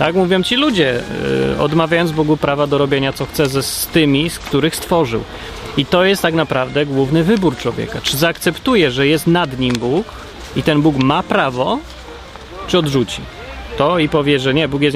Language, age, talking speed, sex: Polish, 30-49, 180 wpm, male